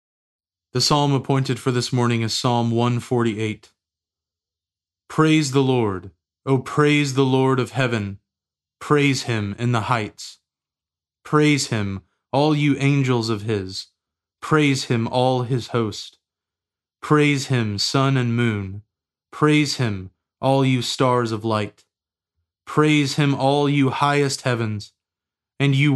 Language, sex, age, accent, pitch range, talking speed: English, male, 20-39, American, 100-135 Hz, 125 wpm